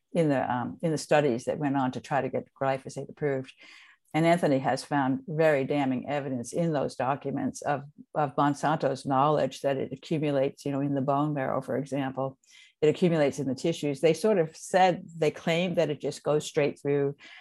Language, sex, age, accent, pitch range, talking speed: English, female, 60-79, American, 135-160 Hz, 195 wpm